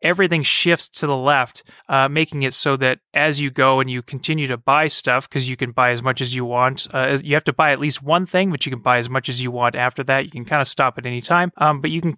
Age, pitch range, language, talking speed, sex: 30-49, 125-155 Hz, English, 295 wpm, male